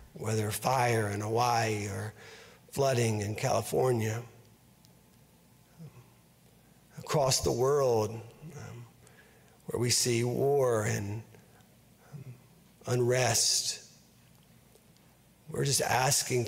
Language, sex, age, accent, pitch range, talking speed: English, male, 50-69, American, 110-130 Hz, 80 wpm